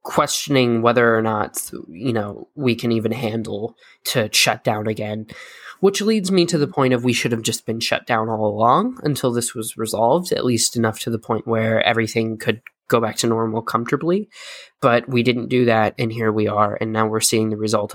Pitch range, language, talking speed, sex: 110-125 Hz, English, 210 wpm, male